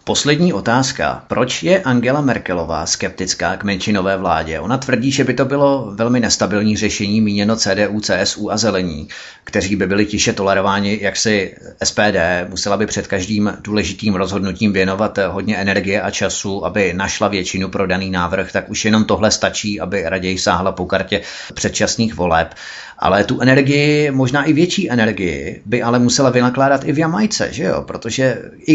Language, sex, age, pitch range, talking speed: Czech, male, 30-49, 100-125 Hz, 165 wpm